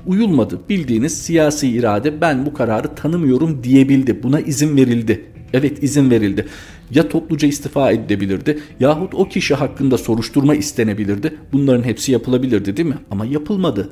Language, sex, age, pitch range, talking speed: Turkish, male, 50-69, 110-140 Hz, 140 wpm